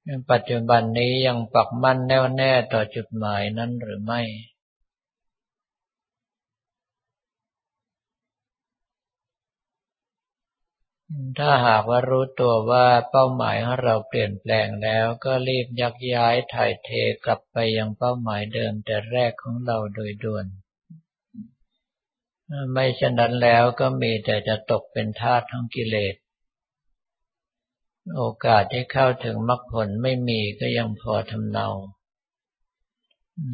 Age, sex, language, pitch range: 60-79, male, Thai, 110-125 Hz